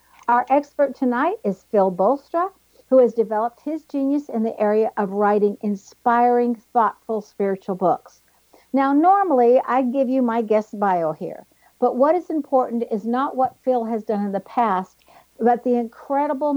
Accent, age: American, 60-79